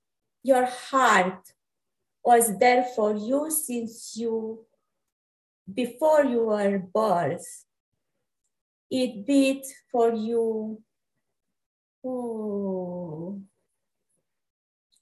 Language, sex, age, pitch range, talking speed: English, female, 30-49, 195-250 Hz, 70 wpm